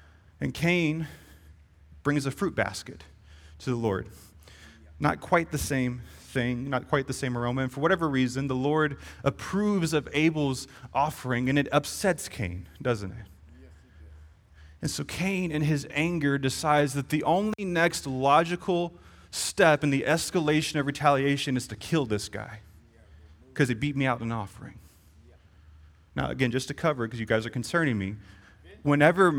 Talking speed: 160 wpm